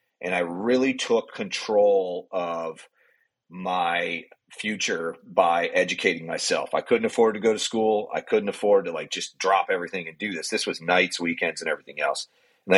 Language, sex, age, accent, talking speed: English, male, 40-59, American, 175 wpm